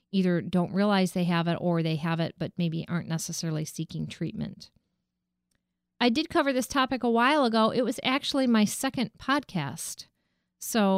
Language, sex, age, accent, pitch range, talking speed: English, female, 40-59, American, 170-220 Hz, 170 wpm